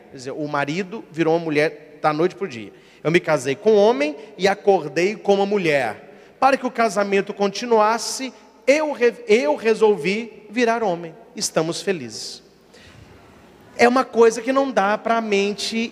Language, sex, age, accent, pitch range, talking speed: Portuguese, male, 40-59, Brazilian, 185-235 Hz, 165 wpm